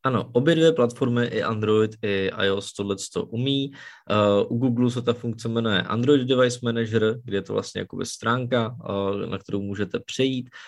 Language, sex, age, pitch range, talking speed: Czech, male, 20-39, 100-120 Hz, 175 wpm